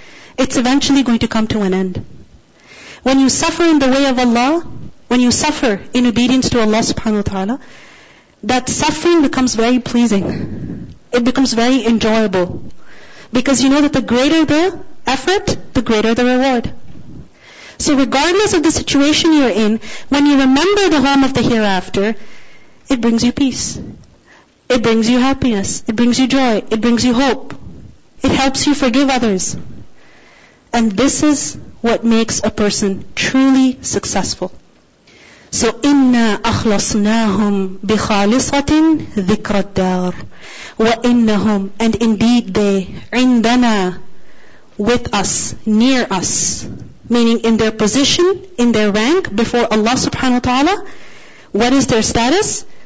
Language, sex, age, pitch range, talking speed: English, female, 40-59, 220-270 Hz, 140 wpm